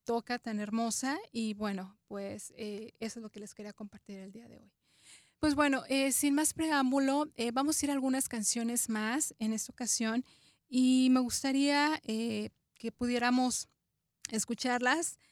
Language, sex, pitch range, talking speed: English, female, 215-255 Hz, 165 wpm